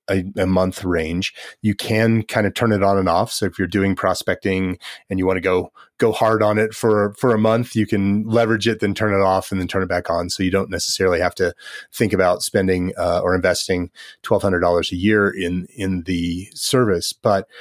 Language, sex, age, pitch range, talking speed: English, male, 30-49, 90-105 Hz, 220 wpm